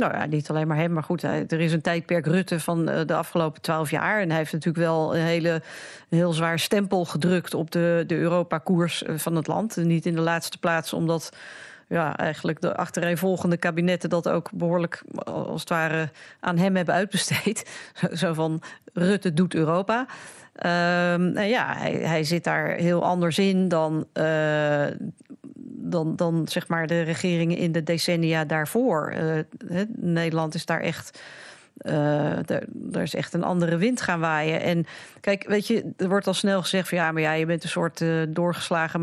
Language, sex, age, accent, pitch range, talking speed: Dutch, female, 40-59, Dutch, 165-190 Hz, 185 wpm